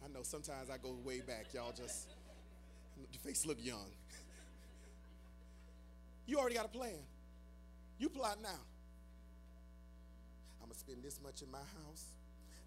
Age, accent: 30-49, American